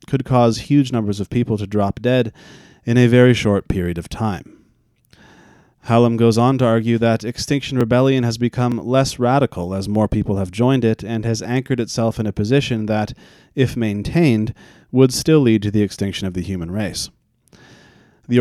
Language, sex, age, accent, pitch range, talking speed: English, male, 30-49, American, 110-130 Hz, 180 wpm